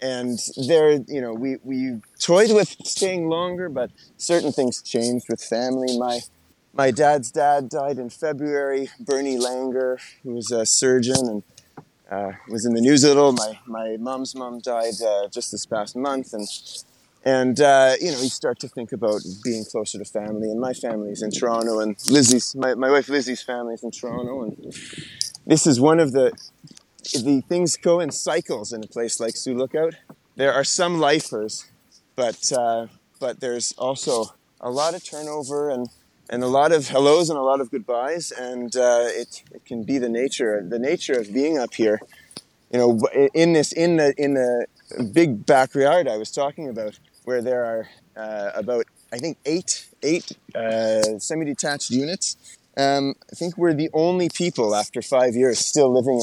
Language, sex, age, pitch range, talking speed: English, male, 20-39, 115-145 Hz, 180 wpm